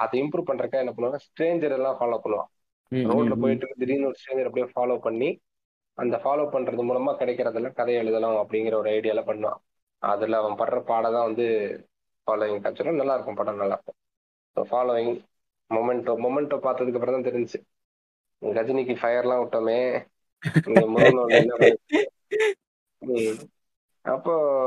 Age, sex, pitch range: 20-39, male, 120-145 Hz